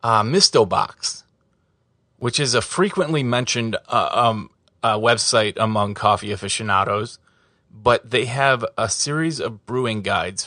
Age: 30-49